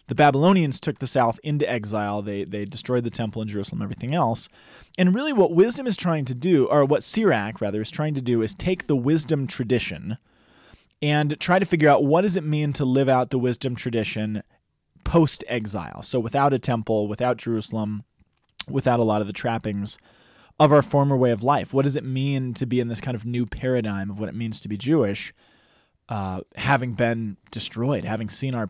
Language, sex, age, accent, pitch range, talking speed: English, male, 20-39, American, 115-155 Hz, 205 wpm